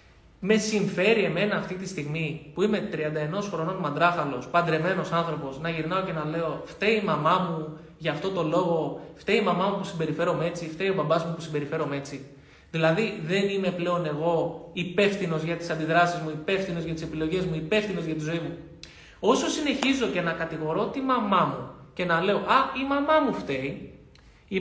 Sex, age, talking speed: male, 20-39, 185 wpm